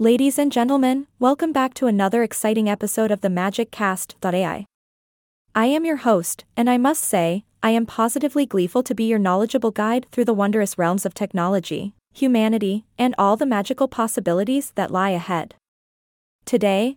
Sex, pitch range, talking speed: female, 200-245 Hz, 160 wpm